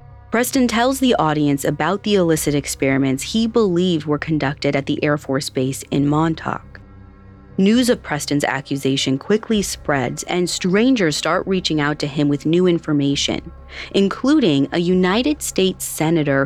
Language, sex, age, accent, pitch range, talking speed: English, female, 30-49, American, 140-195 Hz, 145 wpm